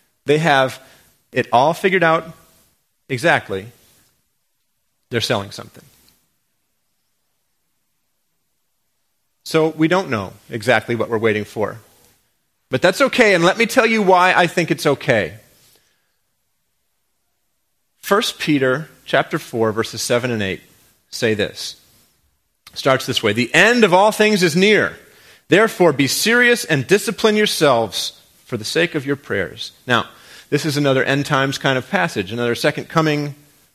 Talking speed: 135 wpm